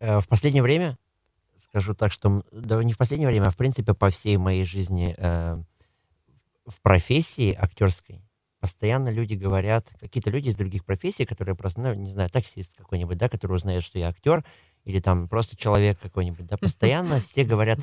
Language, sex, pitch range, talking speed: Russian, male, 90-110 Hz, 175 wpm